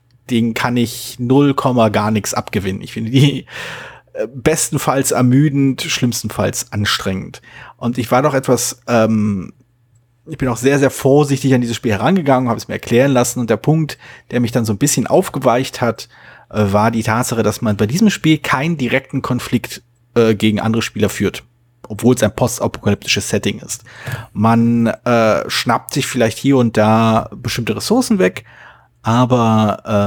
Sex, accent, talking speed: male, German, 160 wpm